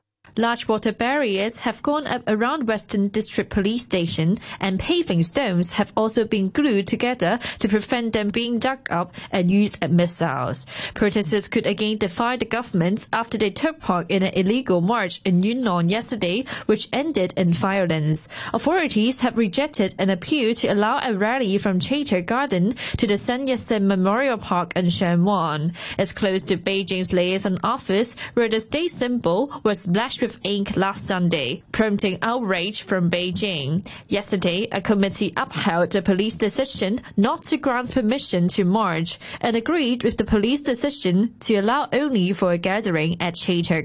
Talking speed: 160 wpm